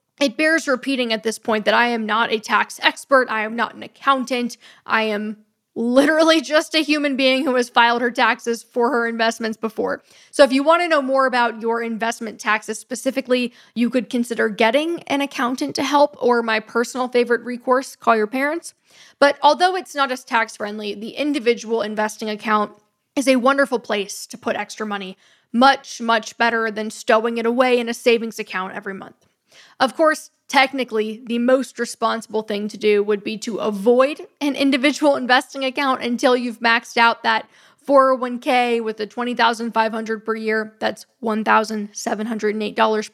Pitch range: 220-265 Hz